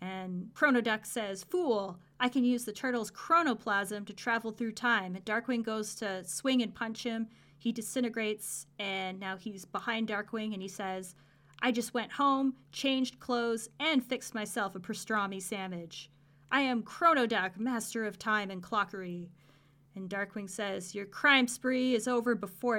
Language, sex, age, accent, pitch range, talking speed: English, female, 30-49, American, 195-245 Hz, 160 wpm